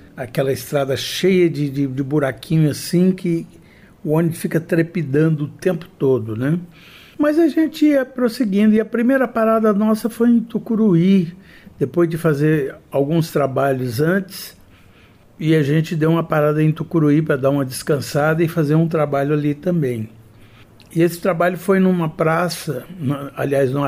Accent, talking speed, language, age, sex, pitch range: Brazilian, 155 wpm, Portuguese, 60-79, male, 135-170 Hz